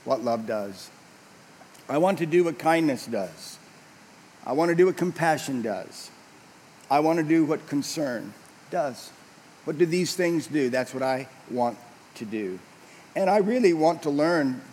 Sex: male